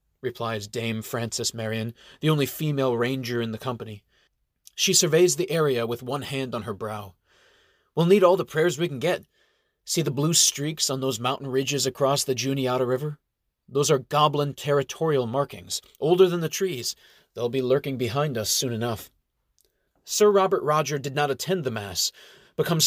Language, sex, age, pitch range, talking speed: English, male, 30-49, 120-165 Hz, 175 wpm